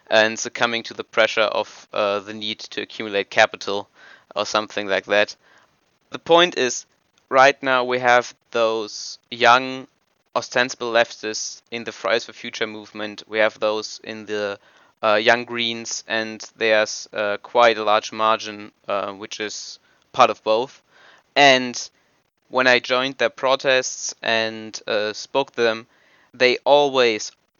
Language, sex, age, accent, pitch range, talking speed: English, male, 20-39, German, 110-120 Hz, 145 wpm